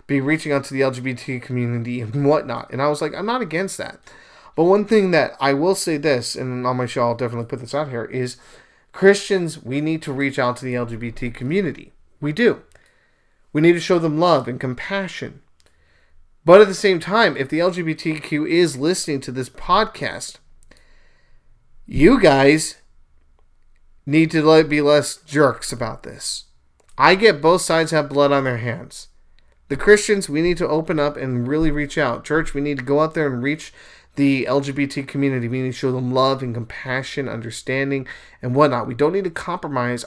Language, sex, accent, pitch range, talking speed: English, male, American, 125-155 Hz, 190 wpm